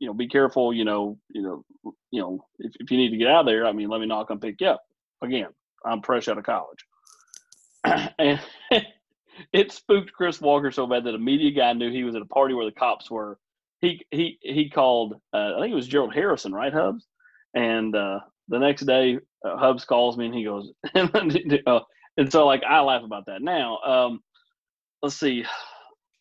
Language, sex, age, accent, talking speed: English, male, 30-49, American, 210 wpm